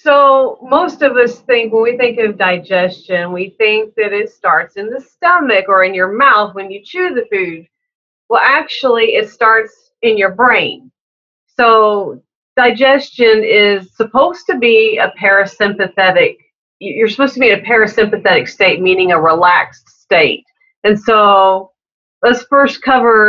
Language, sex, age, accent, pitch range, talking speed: English, female, 40-59, American, 190-255 Hz, 150 wpm